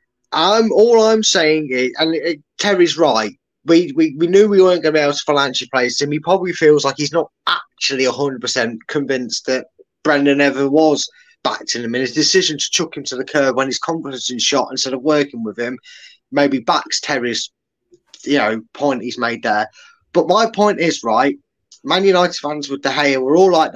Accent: British